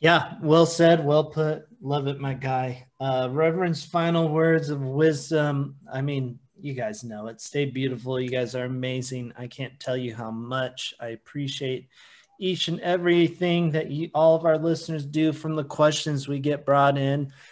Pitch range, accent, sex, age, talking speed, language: 130-155 Hz, American, male, 20-39, 180 wpm, English